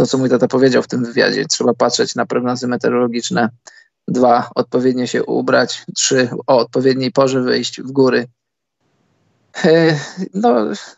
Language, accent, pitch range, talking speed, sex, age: Polish, native, 125-145 Hz, 135 wpm, male, 20-39